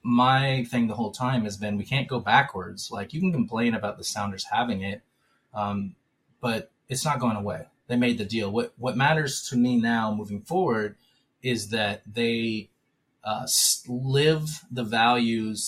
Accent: American